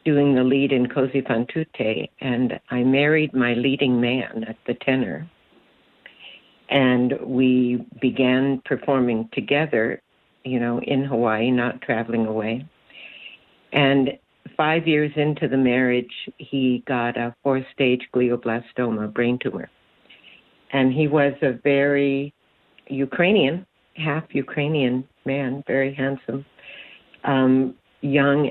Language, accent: English, American